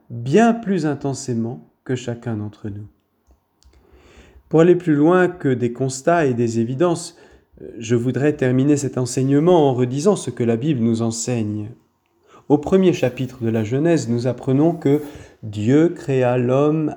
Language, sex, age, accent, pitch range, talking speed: French, male, 40-59, French, 120-155 Hz, 150 wpm